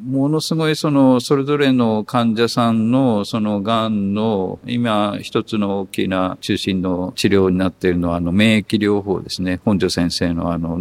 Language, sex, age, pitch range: Japanese, male, 50-69, 90-120 Hz